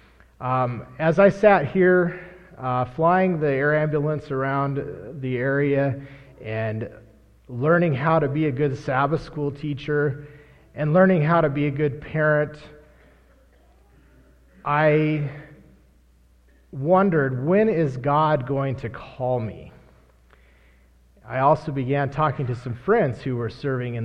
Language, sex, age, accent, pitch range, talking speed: English, male, 40-59, American, 115-150 Hz, 125 wpm